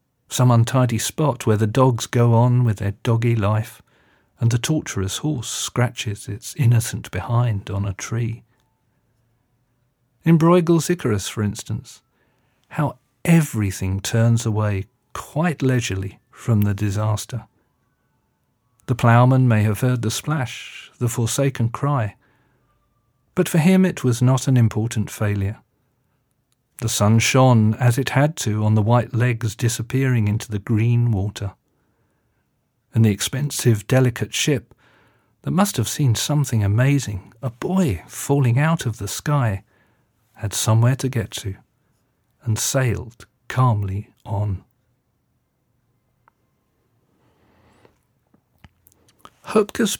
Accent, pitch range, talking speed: British, 110-130 Hz, 120 wpm